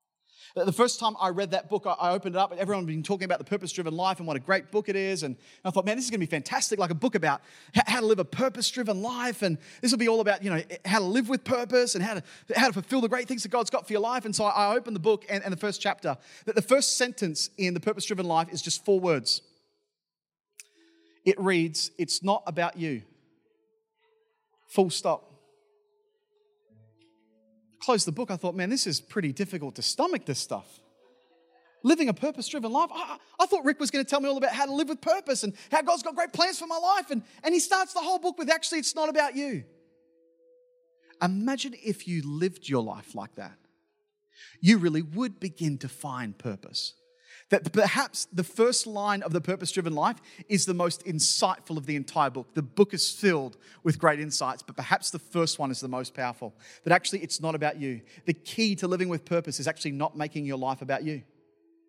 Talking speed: 225 wpm